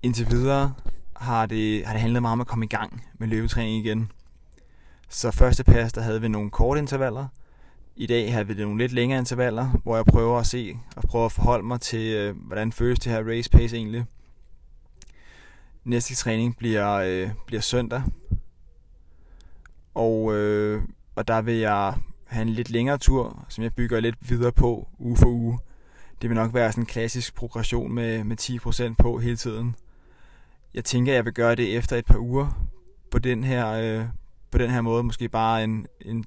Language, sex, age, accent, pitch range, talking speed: Danish, male, 20-39, native, 110-120 Hz, 185 wpm